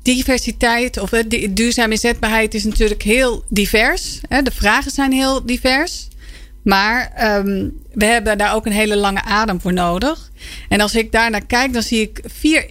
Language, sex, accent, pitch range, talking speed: Dutch, female, Dutch, 205-255 Hz, 155 wpm